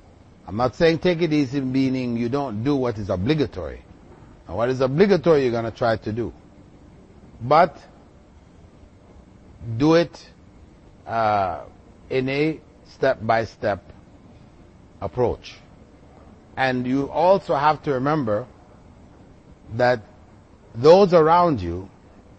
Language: English